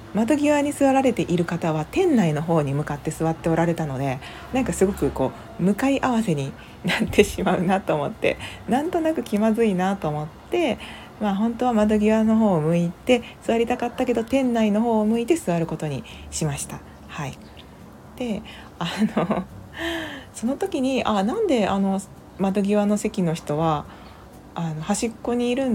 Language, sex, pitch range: Japanese, female, 155-225 Hz